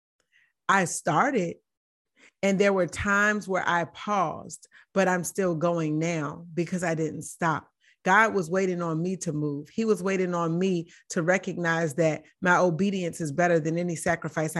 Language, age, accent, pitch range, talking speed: English, 30-49, American, 165-200 Hz, 165 wpm